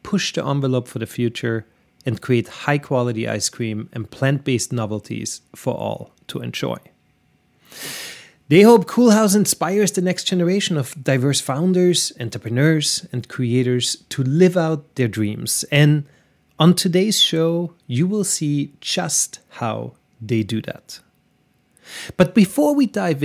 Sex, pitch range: male, 120-180 Hz